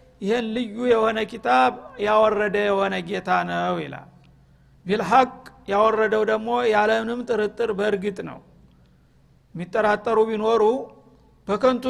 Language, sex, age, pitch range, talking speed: Amharic, male, 50-69, 200-235 Hz, 90 wpm